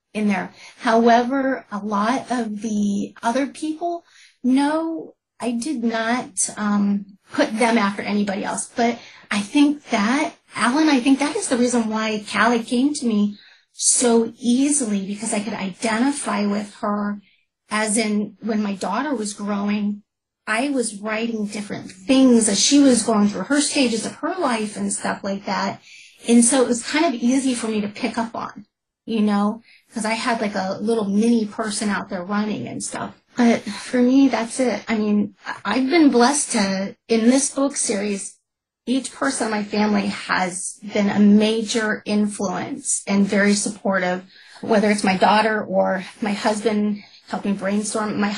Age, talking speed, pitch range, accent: 30-49, 165 wpm, 205-245 Hz, American